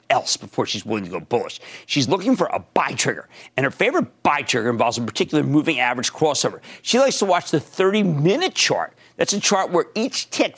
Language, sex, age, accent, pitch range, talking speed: English, male, 50-69, American, 125-200 Hz, 215 wpm